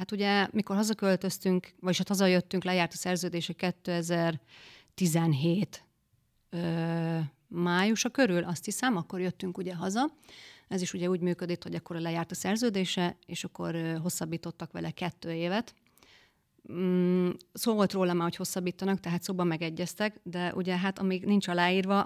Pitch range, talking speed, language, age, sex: 170-195 Hz, 130 wpm, Hungarian, 30-49, female